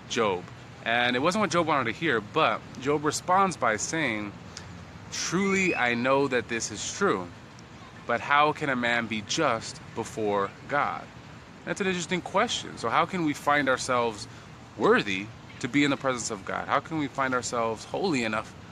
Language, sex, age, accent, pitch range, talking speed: English, male, 20-39, American, 110-140 Hz, 175 wpm